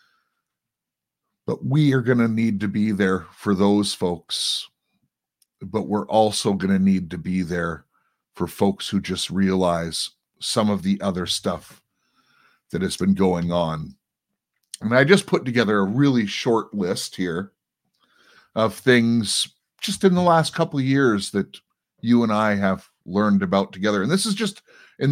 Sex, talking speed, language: male, 160 wpm, English